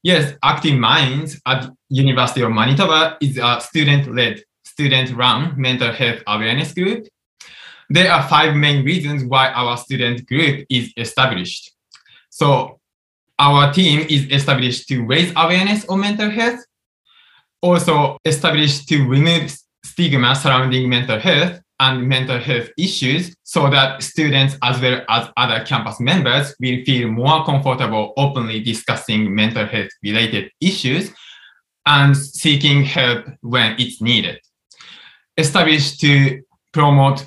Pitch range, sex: 125-150 Hz, male